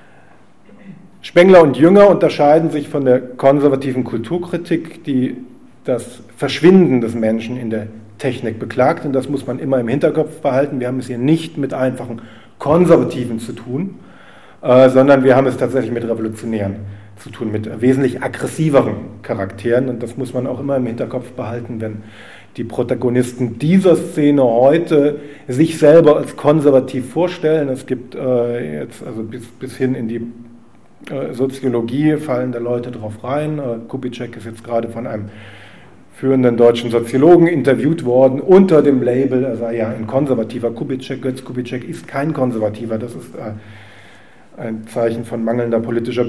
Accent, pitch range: German, 115-140 Hz